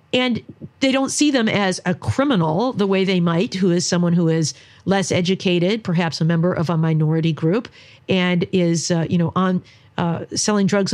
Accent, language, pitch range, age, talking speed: American, English, 160-200 Hz, 50-69, 190 wpm